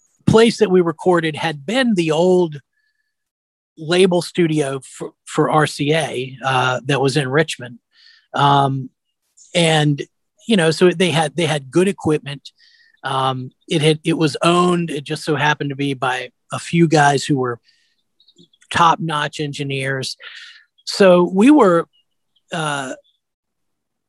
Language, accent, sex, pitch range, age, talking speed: English, American, male, 140-180 Hz, 40-59, 135 wpm